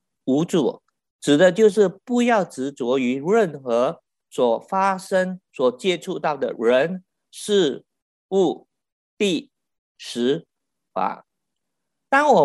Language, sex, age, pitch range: Chinese, male, 50-69, 150-205 Hz